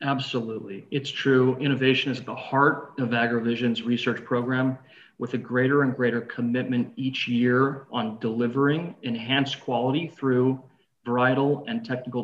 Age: 40-59